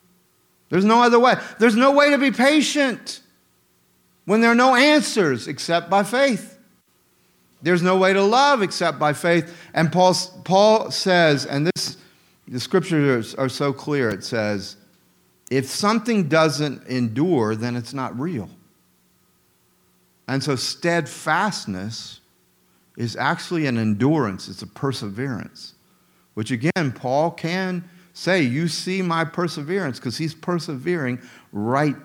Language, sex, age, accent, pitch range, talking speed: English, male, 50-69, American, 105-170 Hz, 130 wpm